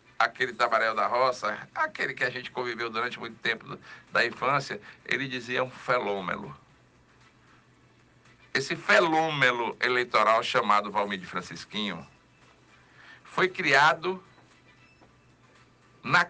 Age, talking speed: 60-79, 105 wpm